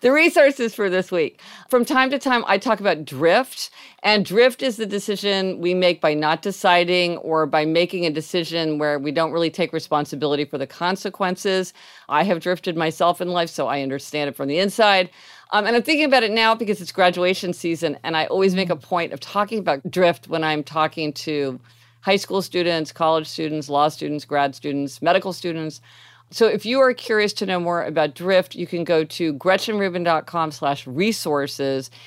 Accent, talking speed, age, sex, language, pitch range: American, 195 wpm, 50-69, female, English, 150-205 Hz